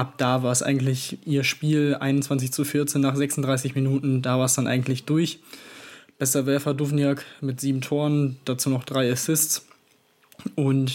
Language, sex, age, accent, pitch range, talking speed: German, male, 20-39, German, 135-150 Hz, 165 wpm